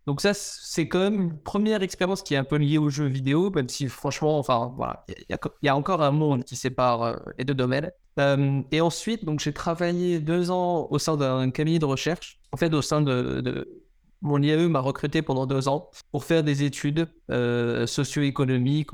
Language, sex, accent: French, male, French